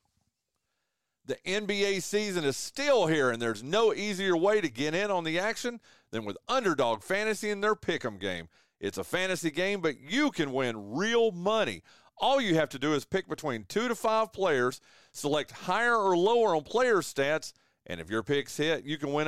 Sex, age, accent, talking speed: male, 40-59, American, 195 wpm